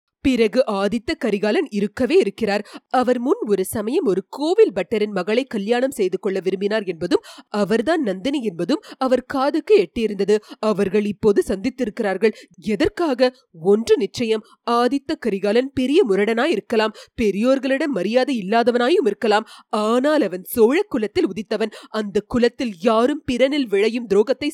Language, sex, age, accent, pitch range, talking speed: Tamil, female, 30-49, native, 215-290 Hz, 115 wpm